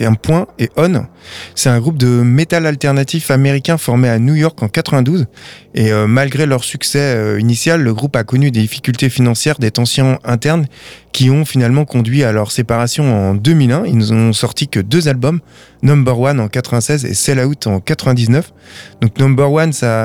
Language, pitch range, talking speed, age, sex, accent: French, 115-145 Hz, 185 wpm, 20-39, male, French